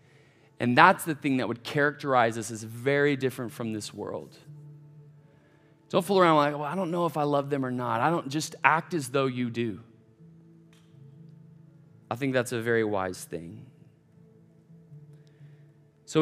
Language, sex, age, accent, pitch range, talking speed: English, male, 30-49, American, 120-150 Hz, 165 wpm